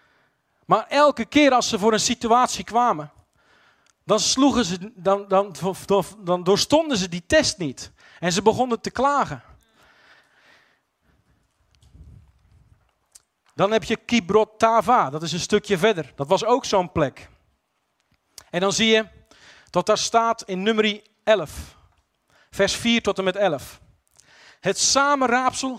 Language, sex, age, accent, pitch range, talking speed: English, male, 40-59, Dutch, 180-230 Hz, 135 wpm